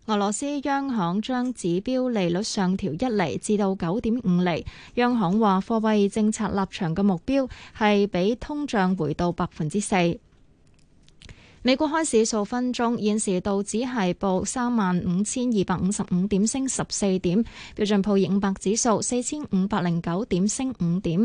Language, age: Chinese, 20-39